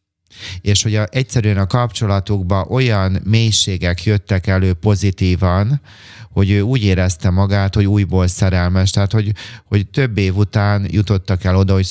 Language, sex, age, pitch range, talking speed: Hungarian, male, 30-49, 95-110 Hz, 145 wpm